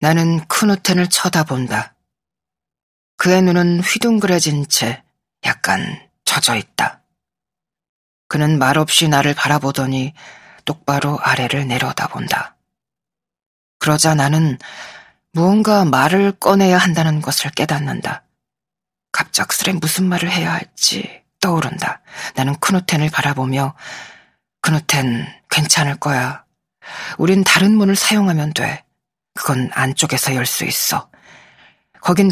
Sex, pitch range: female, 135-180 Hz